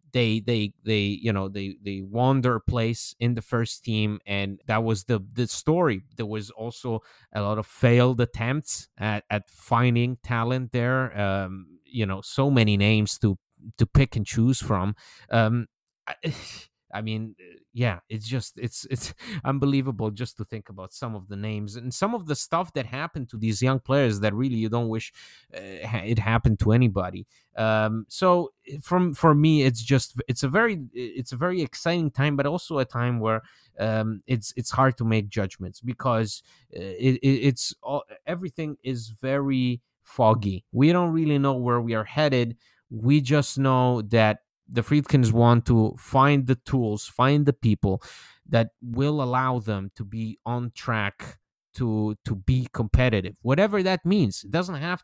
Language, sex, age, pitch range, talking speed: English, male, 30-49, 110-135 Hz, 170 wpm